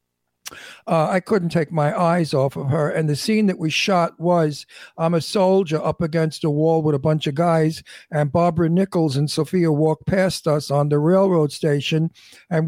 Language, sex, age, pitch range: English, male, 60-79, 150-185 Hz